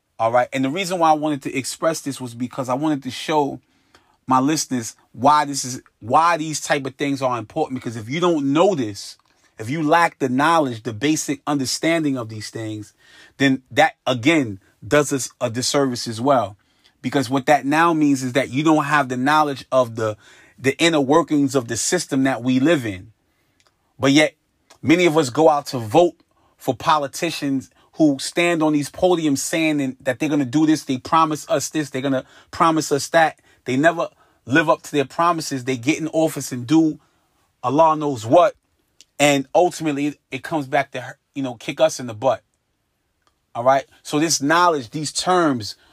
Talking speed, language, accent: 195 wpm, English, American